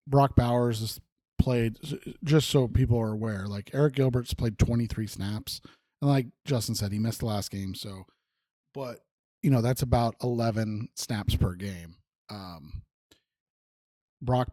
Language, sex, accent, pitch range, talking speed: English, male, American, 105-130 Hz, 150 wpm